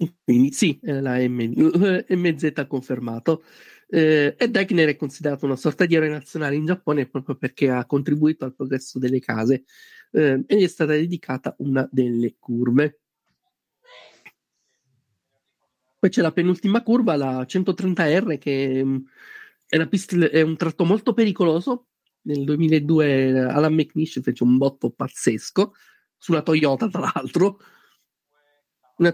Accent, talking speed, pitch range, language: native, 130 wpm, 135-185 Hz, Italian